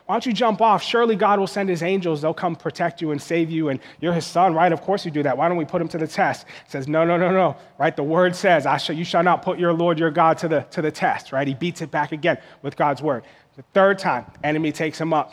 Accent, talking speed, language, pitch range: American, 300 wpm, English, 165-205 Hz